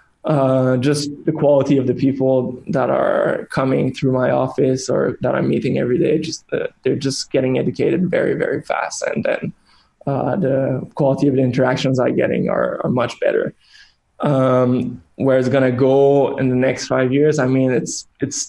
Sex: male